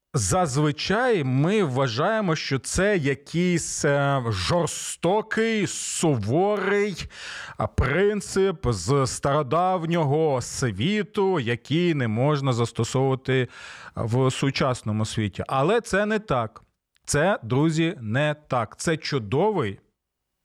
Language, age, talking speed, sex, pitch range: Ukrainian, 40-59, 85 wpm, male, 110-160 Hz